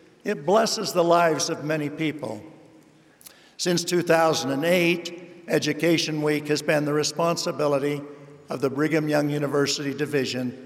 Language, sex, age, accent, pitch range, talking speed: English, male, 60-79, American, 145-170 Hz, 120 wpm